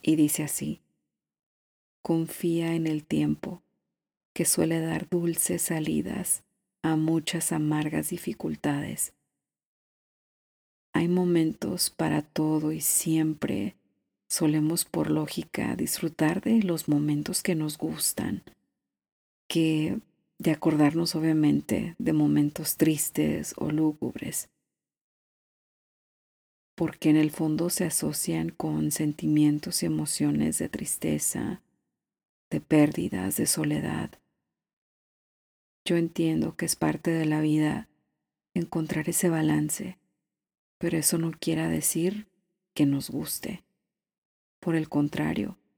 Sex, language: female, Spanish